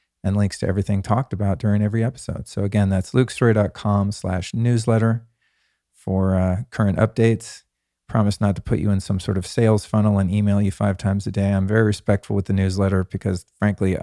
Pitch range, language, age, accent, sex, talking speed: 95-115 Hz, English, 40-59, American, male, 195 wpm